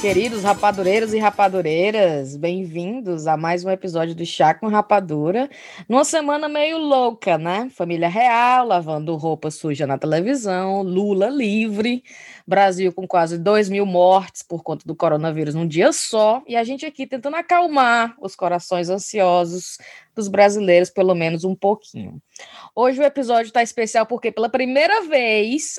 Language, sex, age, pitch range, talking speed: Portuguese, female, 20-39, 175-235 Hz, 150 wpm